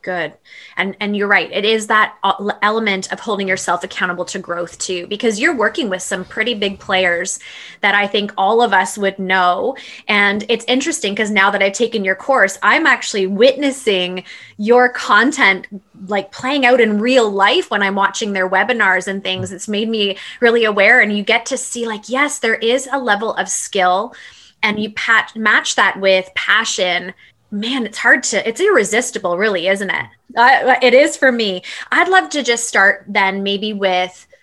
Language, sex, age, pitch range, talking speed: English, female, 20-39, 195-240 Hz, 185 wpm